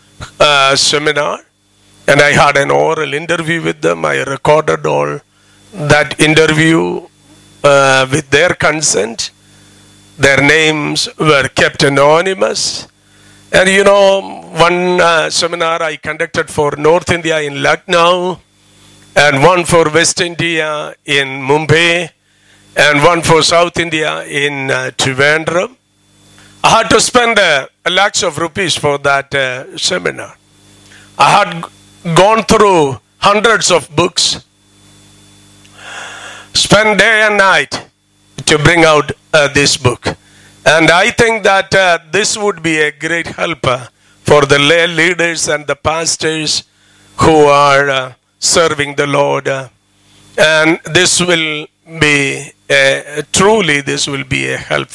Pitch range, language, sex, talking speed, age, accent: 130-170 Hz, English, male, 130 wpm, 50-69, Indian